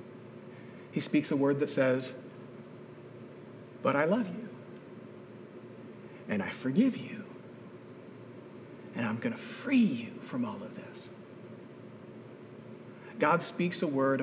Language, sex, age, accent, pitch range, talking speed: English, male, 40-59, American, 155-240 Hz, 115 wpm